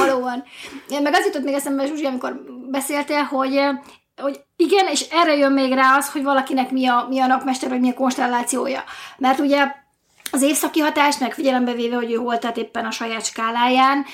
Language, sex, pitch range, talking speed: Hungarian, female, 255-325 Hz, 180 wpm